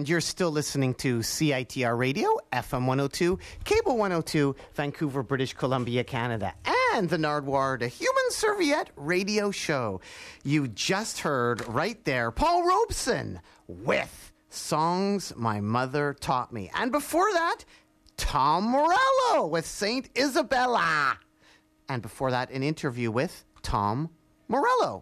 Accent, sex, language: American, male, English